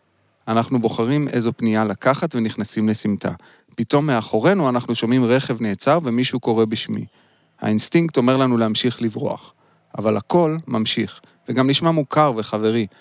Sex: male